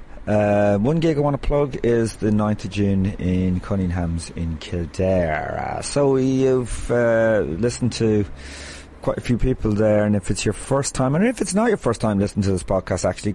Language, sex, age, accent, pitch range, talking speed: English, male, 30-49, British, 90-115 Hz, 200 wpm